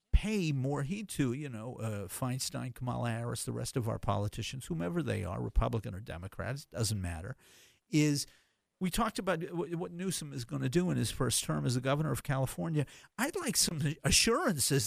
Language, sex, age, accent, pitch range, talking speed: English, male, 50-69, American, 120-175 Hz, 190 wpm